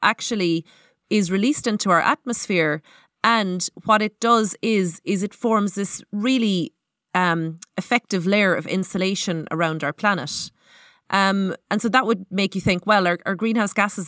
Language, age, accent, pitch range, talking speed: English, 30-49, Irish, 170-215 Hz, 160 wpm